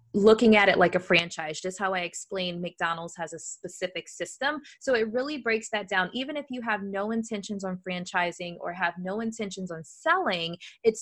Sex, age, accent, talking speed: female, 20-39, American, 195 wpm